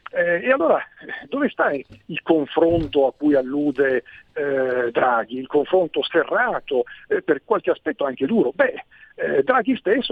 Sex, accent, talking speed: male, native, 150 wpm